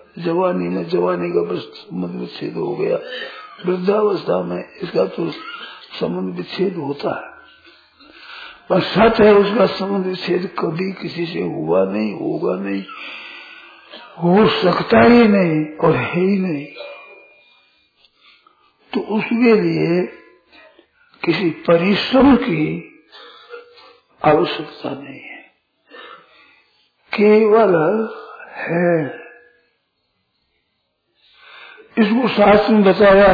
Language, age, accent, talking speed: Hindi, 60-79, native, 85 wpm